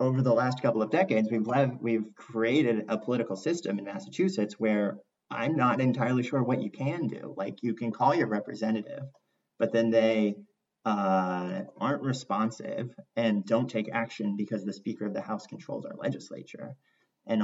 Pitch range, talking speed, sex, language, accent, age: 105-130 Hz, 170 wpm, male, English, American, 30-49